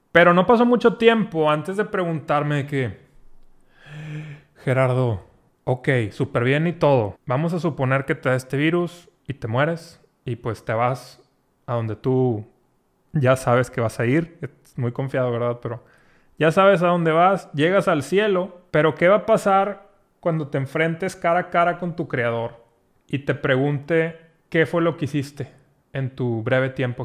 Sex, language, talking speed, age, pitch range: male, Spanish, 175 wpm, 30-49, 135-175 Hz